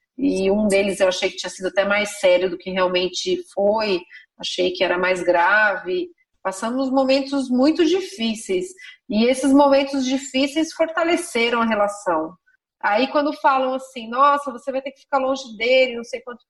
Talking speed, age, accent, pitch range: 165 wpm, 30-49, Brazilian, 215-285 Hz